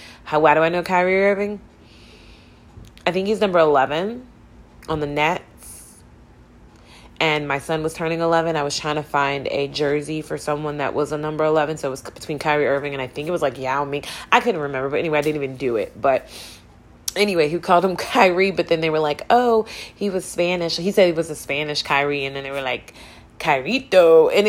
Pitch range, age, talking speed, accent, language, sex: 145-180 Hz, 20-39, 225 wpm, American, English, female